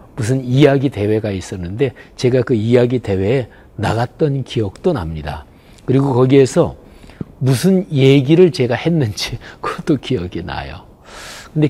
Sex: male